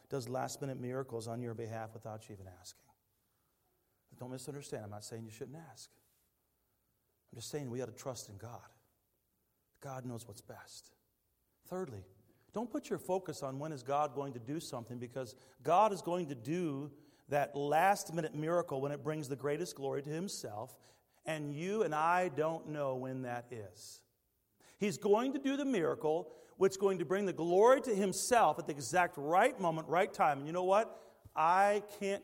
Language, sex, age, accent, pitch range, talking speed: English, male, 40-59, American, 120-165 Hz, 180 wpm